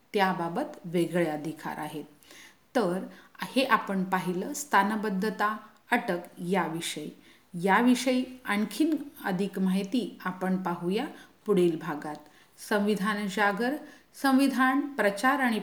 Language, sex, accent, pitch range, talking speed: Hindi, female, native, 185-245 Hz, 80 wpm